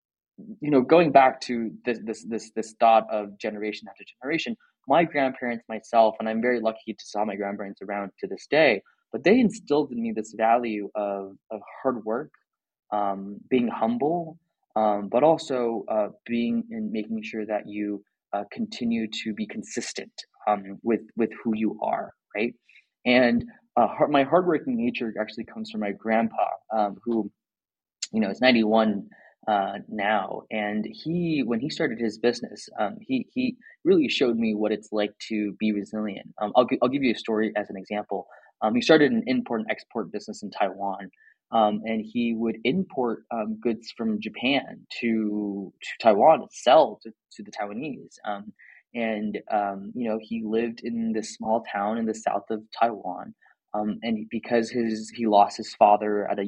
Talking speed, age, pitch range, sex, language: 180 wpm, 20-39, 105-125 Hz, male, English